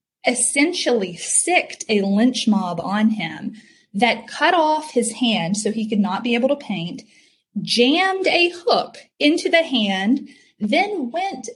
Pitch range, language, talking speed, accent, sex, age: 205-265 Hz, English, 145 wpm, American, female, 30-49